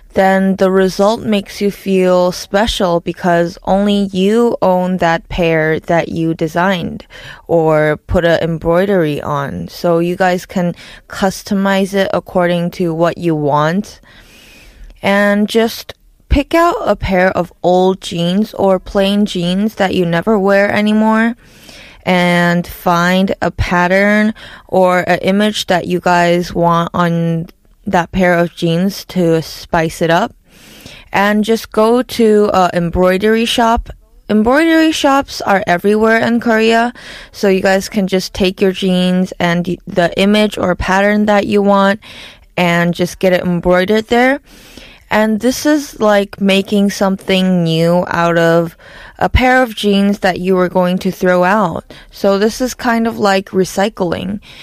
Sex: female